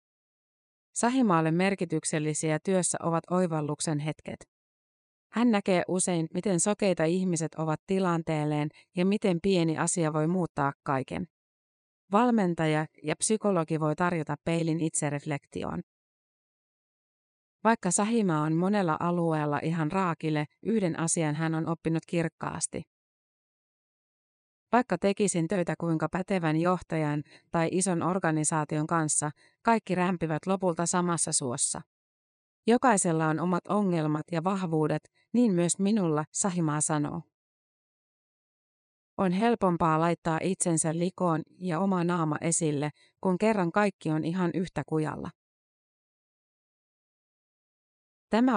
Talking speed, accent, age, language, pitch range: 105 wpm, native, 30-49, Finnish, 155-185 Hz